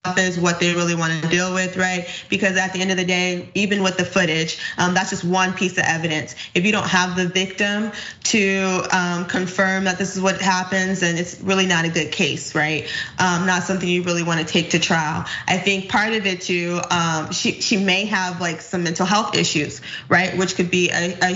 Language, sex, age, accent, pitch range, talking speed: English, female, 20-39, American, 170-190 Hz, 225 wpm